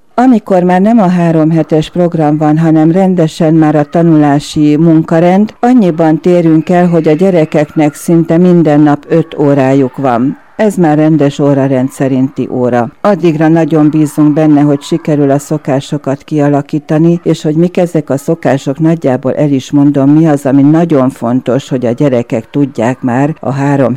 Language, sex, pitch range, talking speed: Hungarian, female, 140-165 Hz, 155 wpm